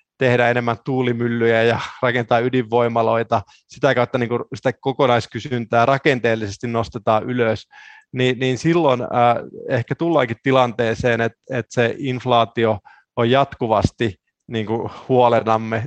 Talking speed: 90 wpm